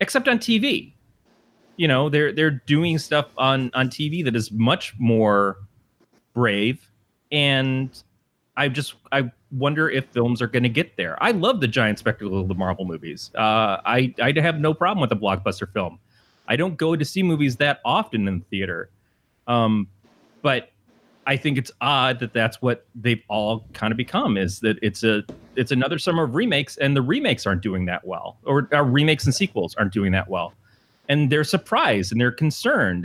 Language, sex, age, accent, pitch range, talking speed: English, male, 30-49, American, 110-145 Hz, 190 wpm